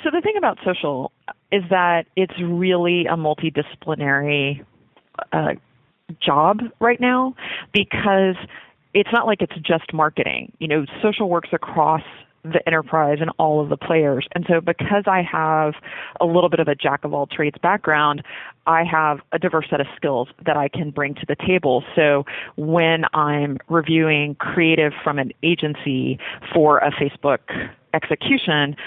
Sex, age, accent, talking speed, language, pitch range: female, 30-49, American, 155 wpm, English, 145-180 Hz